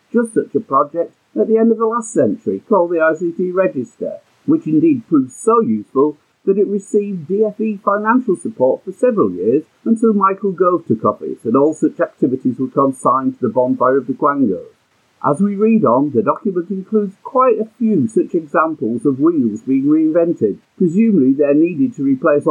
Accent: British